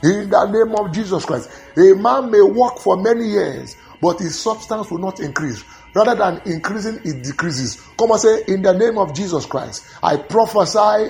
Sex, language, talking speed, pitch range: male, English, 190 wpm, 170-230 Hz